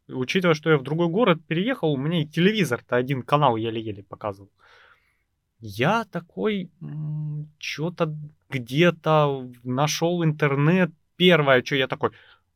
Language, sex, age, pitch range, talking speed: Russian, male, 30-49, 110-160 Hz, 120 wpm